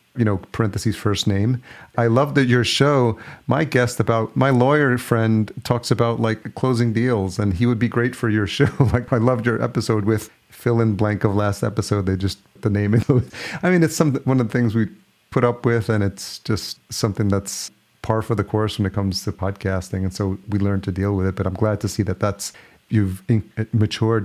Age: 40-59